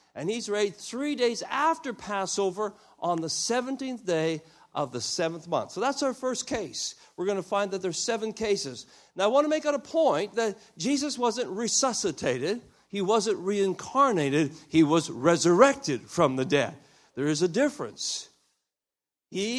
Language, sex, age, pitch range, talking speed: English, male, 60-79, 155-225 Hz, 170 wpm